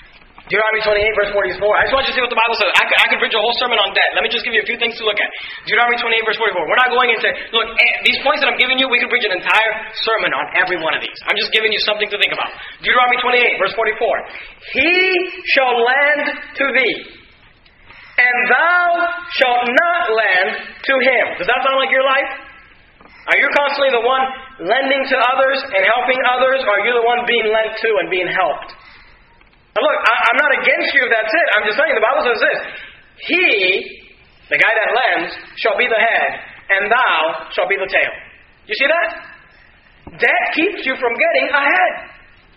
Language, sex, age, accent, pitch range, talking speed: English, male, 20-39, American, 225-275 Hz, 215 wpm